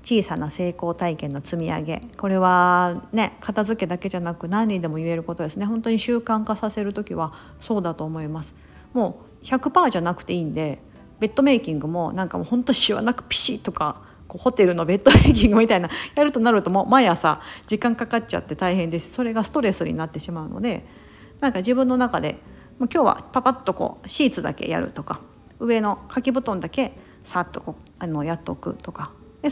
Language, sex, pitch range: Japanese, female, 170-230 Hz